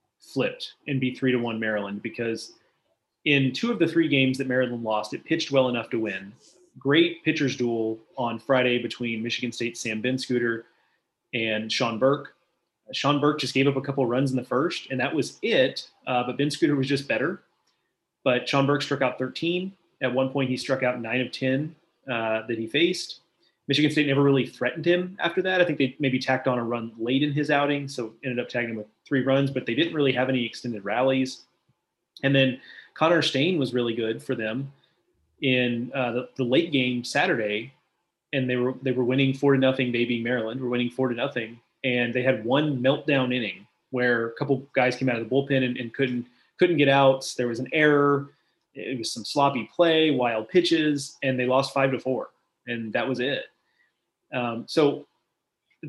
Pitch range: 120-145 Hz